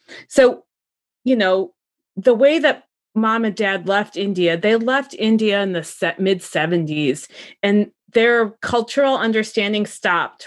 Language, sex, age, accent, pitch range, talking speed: English, female, 30-49, American, 180-235 Hz, 125 wpm